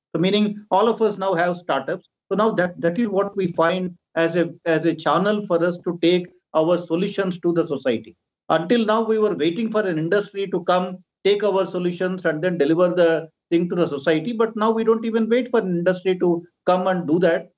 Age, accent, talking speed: 50-69, Indian, 220 wpm